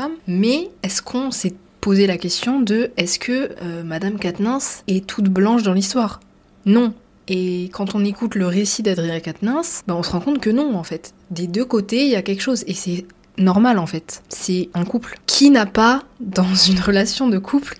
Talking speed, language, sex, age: 200 wpm, French, female, 20-39